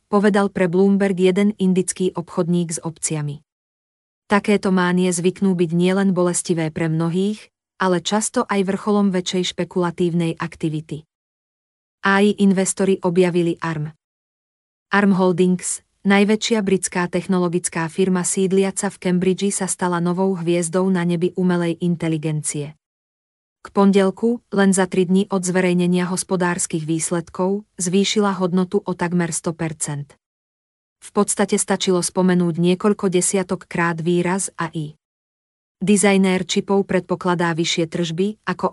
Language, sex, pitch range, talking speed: Slovak, female, 170-195 Hz, 115 wpm